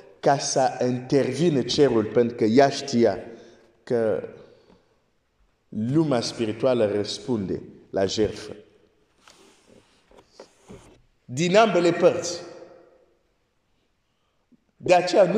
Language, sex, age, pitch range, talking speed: Romanian, male, 50-69, 125-175 Hz, 80 wpm